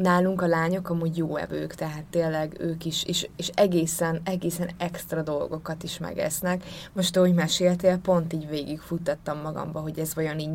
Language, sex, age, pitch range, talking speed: Hungarian, female, 20-39, 160-185 Hz, 165 wpm